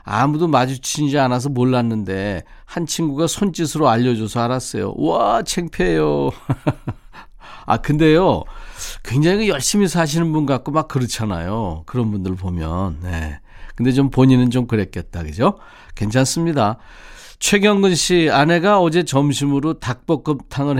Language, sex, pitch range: Korean, male, 120-165 Hz